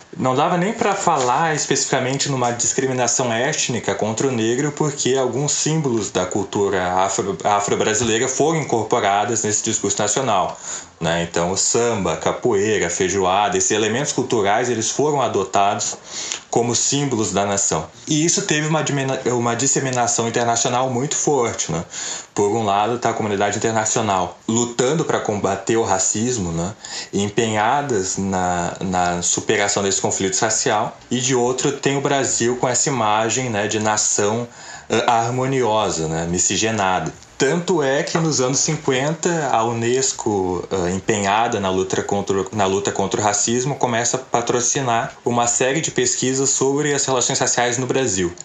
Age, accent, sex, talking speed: 20-39, Brazilian, male, 140 wpm